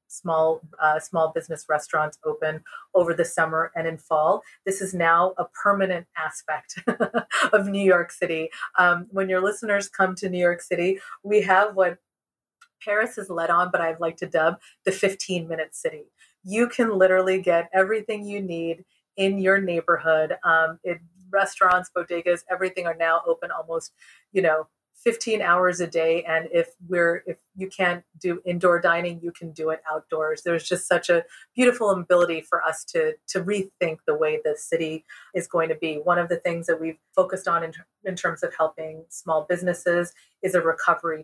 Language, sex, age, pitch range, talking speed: English, female, 30-49, 165-190 Hz, 180 wpm